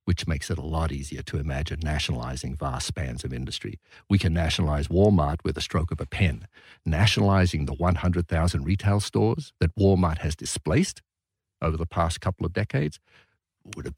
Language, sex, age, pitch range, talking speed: English, male, 50-69, 85-110 Hz, 170 wpm